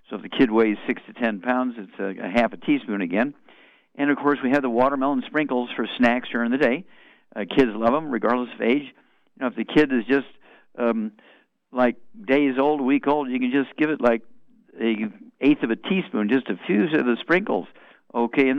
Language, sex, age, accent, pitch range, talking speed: English, male, 50-69, American, 115-160 Hz, 215 wpm